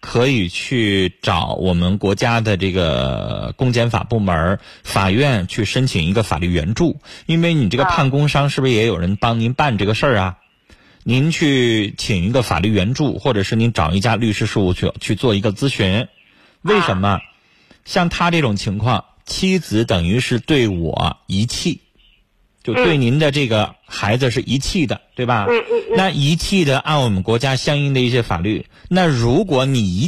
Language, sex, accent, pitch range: Chinese, male, native, 100-145 Hz